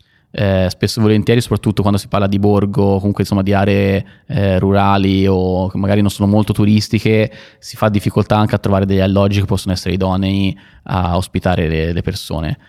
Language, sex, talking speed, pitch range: Italian, male, 190 wpm, 95-105 Hz